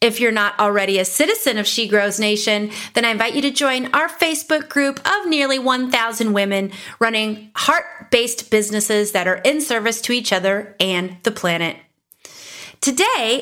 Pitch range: 195-255 Hz